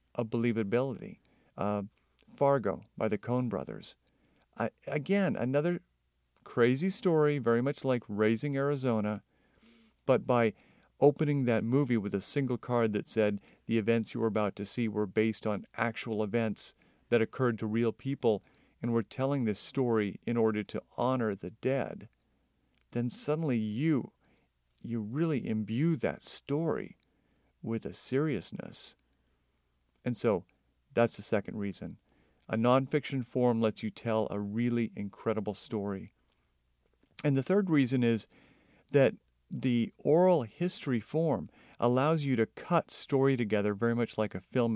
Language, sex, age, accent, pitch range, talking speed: English, male, 50-69, American, 105-135 Hz, 140 wpm